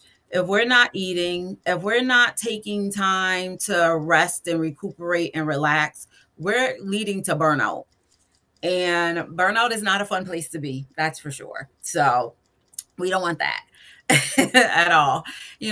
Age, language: 30-49, English